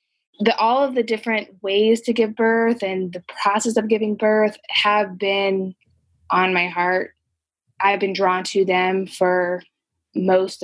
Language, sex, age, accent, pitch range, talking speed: English, female, 20-39, American, 180-215 Hz, 150 wpm